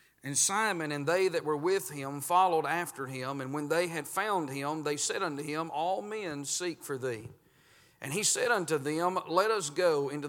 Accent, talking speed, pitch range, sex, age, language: American, 205 wpm, 140-180 Hz, male, 40-59, English